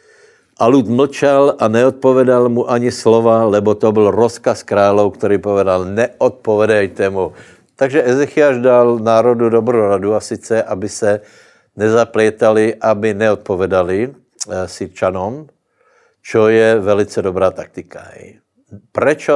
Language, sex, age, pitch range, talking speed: Slovak, male, 60-79, 105-120 Hz, 115 wpm